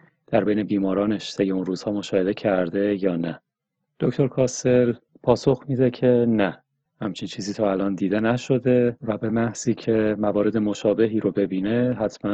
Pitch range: 95-125 Hz